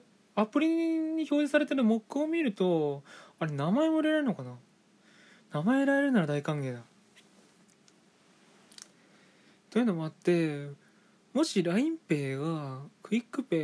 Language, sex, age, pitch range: Japanese, male, 20-39, 140-200 Hz